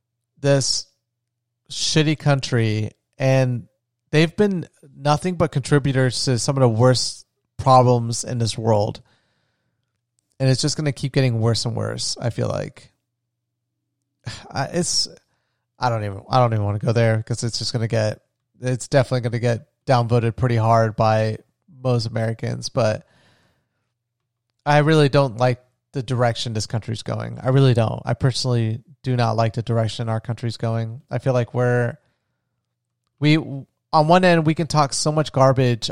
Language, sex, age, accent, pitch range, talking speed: English, male, 30-49, American, 120-140 Hz, 160 wpm